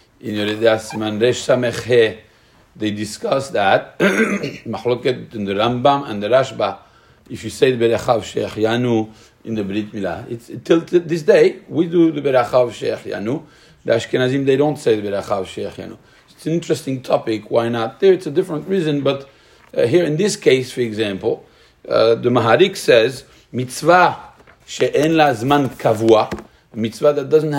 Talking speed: 165 wpm